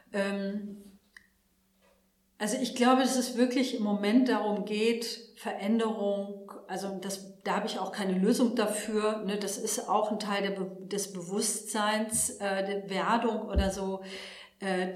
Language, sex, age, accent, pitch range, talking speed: German, female, 40-59, German, 185-220 Hz, 145 wpm